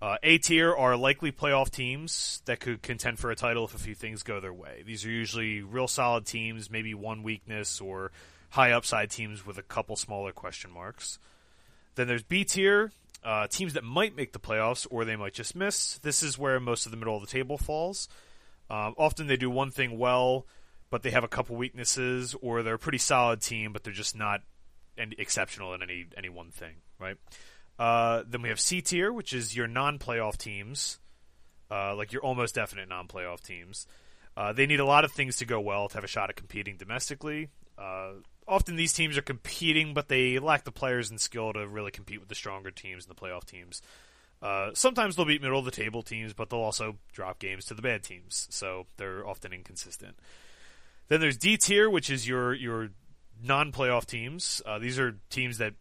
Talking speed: 205 wpm